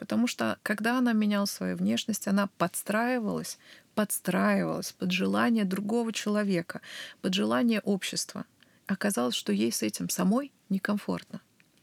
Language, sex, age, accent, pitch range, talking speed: Russian, female, 30-49, native, 185-225 Hz, 120 wpm